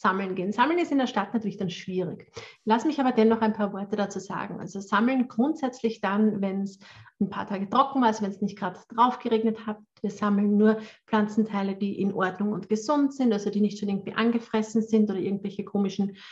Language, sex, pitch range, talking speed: German, female, 210-260 Hz, 215 wpm